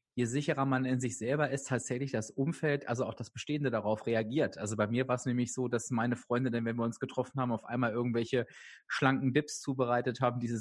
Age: 30-49